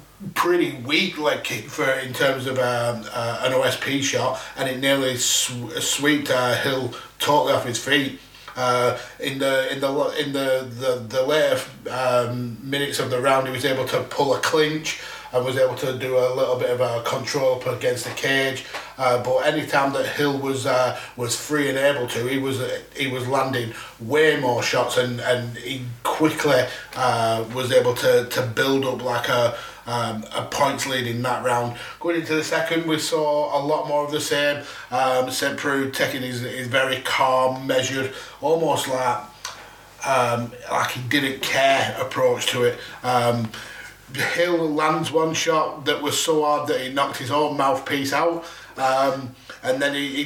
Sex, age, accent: male, 30-49, British